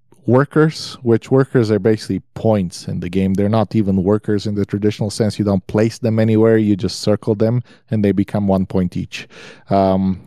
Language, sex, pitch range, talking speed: English, male, 105-135 Hz, 195 wpm